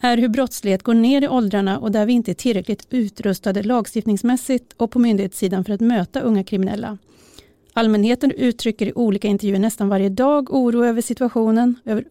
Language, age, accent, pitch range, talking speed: Swedish, 30-49, native, 205-240 Hz, 175 wpm